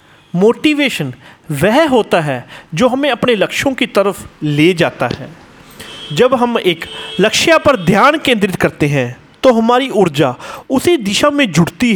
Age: 40-59